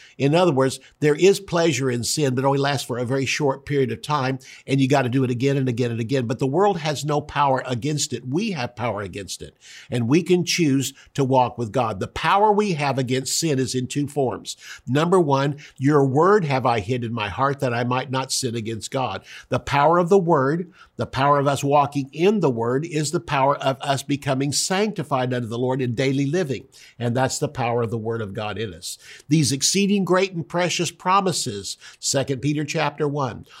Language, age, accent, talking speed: English, 50-69, American, 220 wpm